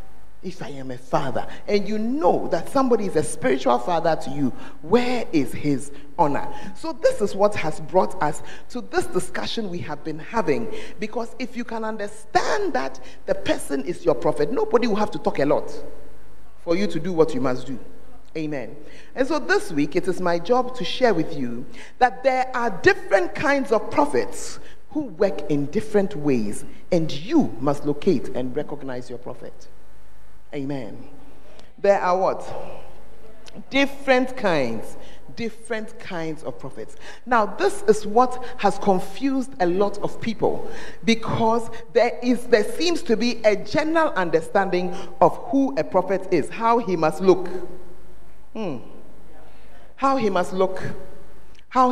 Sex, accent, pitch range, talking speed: male, Nigerian, 160-240 Hz, 160 wpm